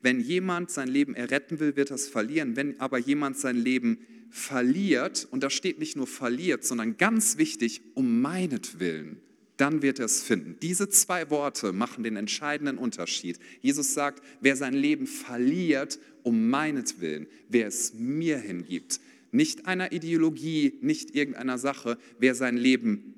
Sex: male